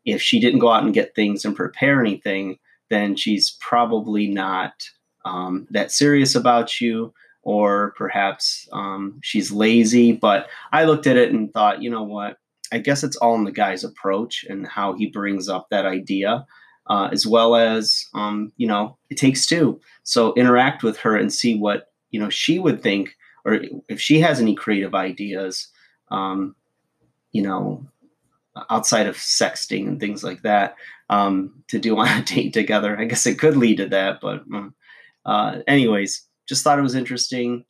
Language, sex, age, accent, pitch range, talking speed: English, male, 30-49, American, 100-120 Hz, 175 wpm